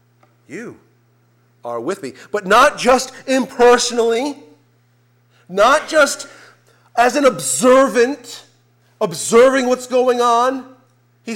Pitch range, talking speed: 120-165 Hz, 95 wpm